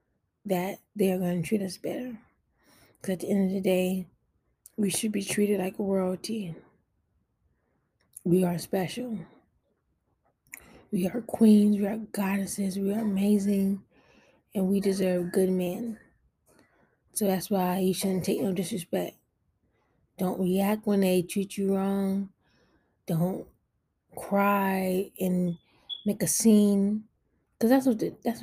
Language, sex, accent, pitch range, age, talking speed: English, female, American, 180-205 Hz, 20-39, 125 wpm